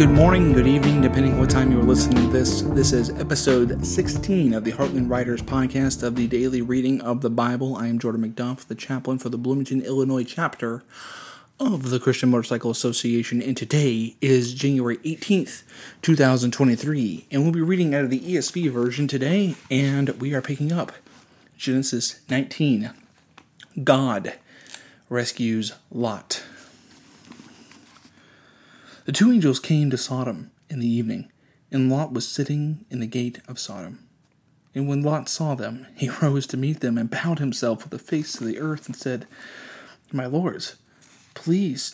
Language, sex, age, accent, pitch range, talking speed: English, male, 30-49, American, 120-150 Hz, 160 wpm